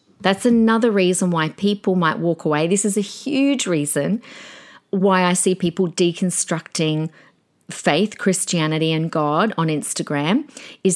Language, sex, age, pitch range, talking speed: English, female, 40-59, 165-220 Hz, 135 wpm